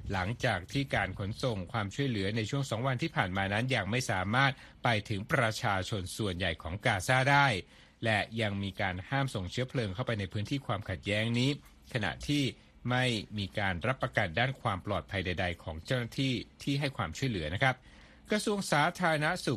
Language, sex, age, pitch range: Thai, male, 60-79, 100-130 Hz